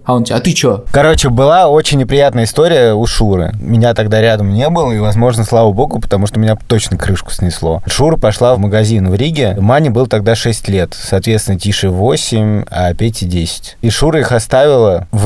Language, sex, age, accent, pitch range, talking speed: Russian, male, 20-39, native, 95-120 Hz, 195 wpm